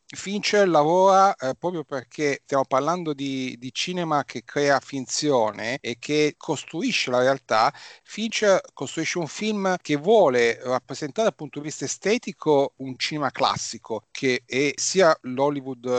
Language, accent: Italian, native